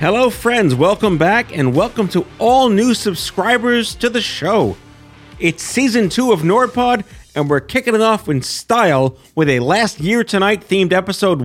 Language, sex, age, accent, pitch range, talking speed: English, male, 40-59, American, 140-195 Hz, 170 wpm